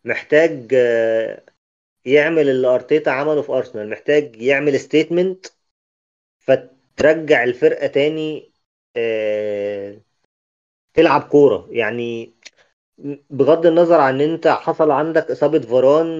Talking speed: 80 wpm